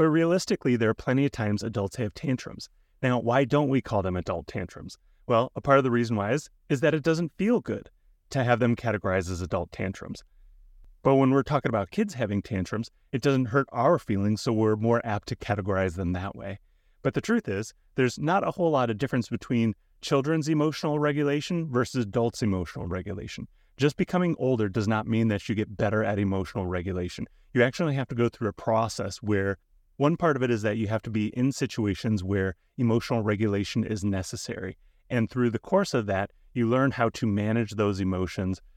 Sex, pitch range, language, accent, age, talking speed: male, 100-125 Hz, English, American, 30-49, 205 wpm